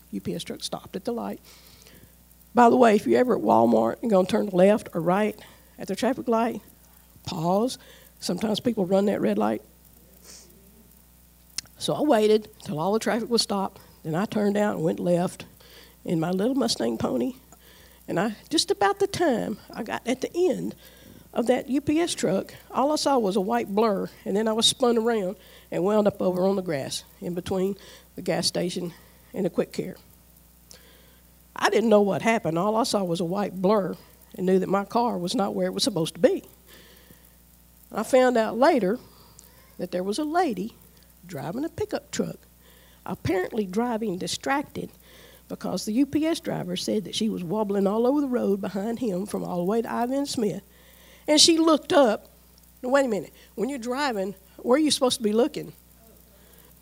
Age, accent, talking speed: 60-79, American, 190 wpm